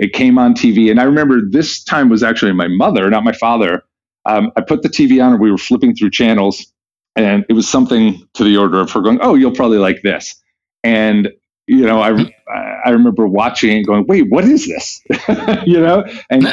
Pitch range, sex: 100-135 Hz, male